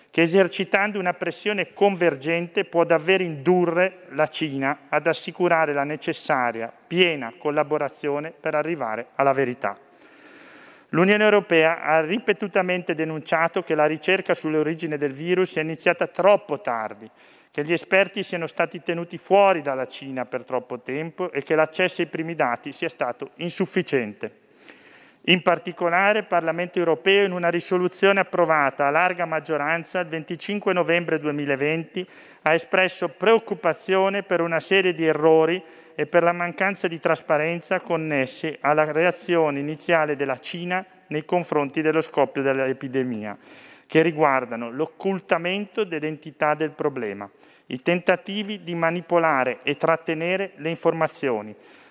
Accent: native